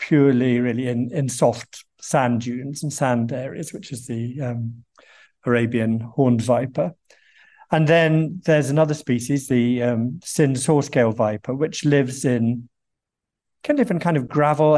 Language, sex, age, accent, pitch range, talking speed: English, male, 50-69, British, 120-145 Hz, 140 wpm